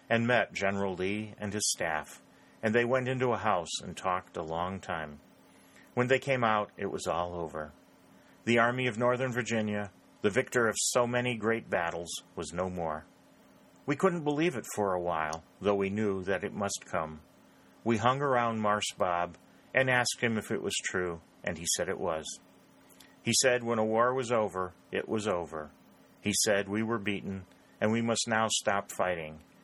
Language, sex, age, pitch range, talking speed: English, male, 40-59, 85-115 Hz, 190 wpm